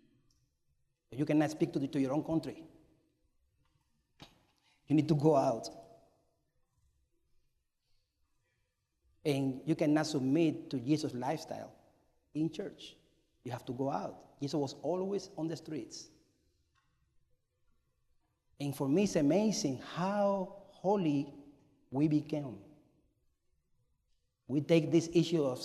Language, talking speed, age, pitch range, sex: English, 110 wpm, 40-59, 135-175 Hz, male